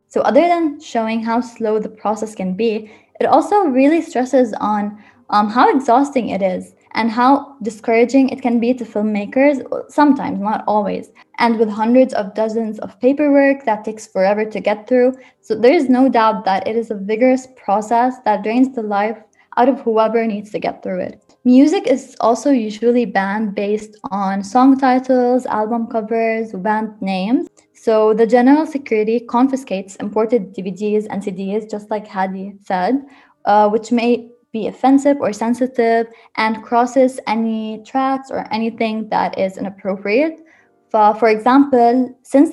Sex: female